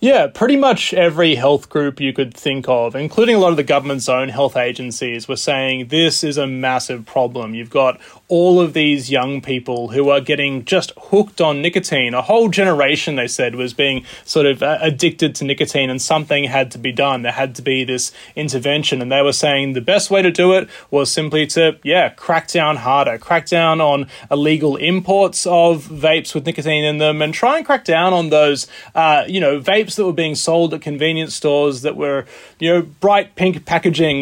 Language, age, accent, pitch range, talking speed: English, 20-39, Australian, 135-170 Hz, 205 wpm